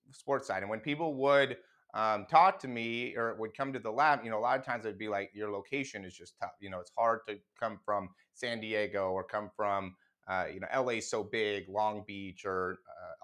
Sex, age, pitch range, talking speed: male, 30-49, 95-120 Hz, 235 wpm